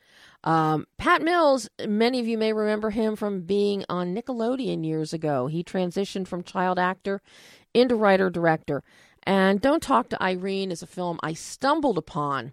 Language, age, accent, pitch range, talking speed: English, 40-59, American, 165-225 Hz, 160 wpm